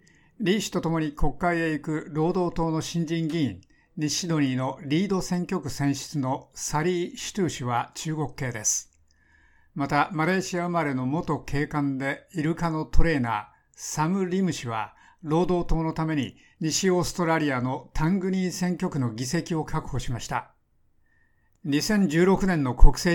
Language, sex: Japanese, male